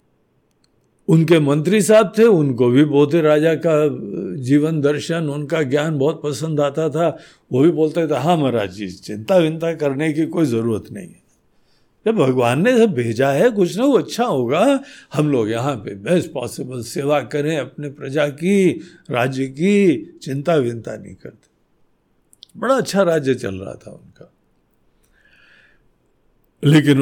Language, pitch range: Hindi, 130-190 Hz